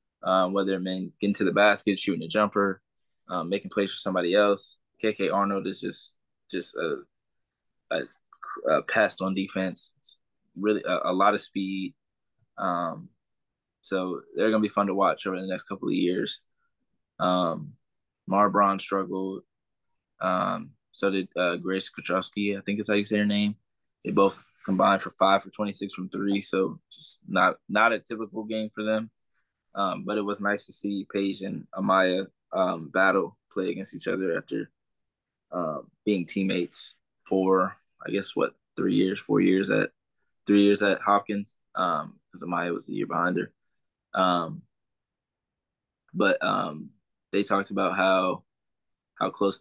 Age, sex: 20-39, male